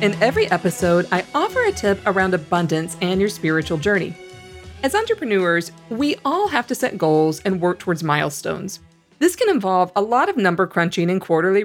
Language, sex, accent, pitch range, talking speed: English, female, American, 180-275 Hz, 180 wpm